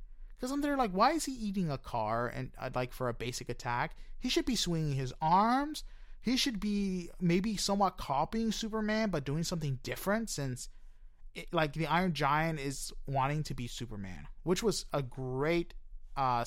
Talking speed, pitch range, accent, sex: 180 wpm, 125-185 Hz, American, male